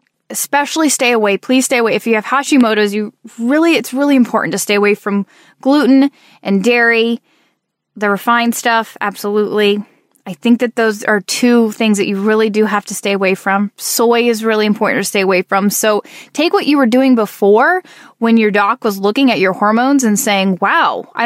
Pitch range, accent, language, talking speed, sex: 205-245 Hz, American, English, 195 wpm, female